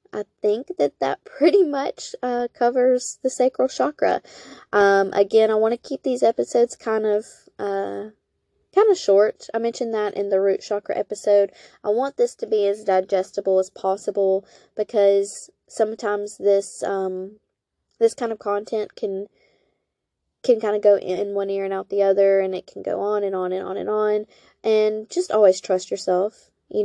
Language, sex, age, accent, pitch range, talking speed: English, female, 10-29, American, 195-240 Hz, 175 wpm